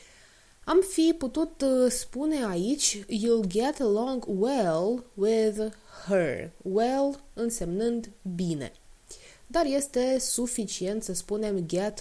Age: 20-39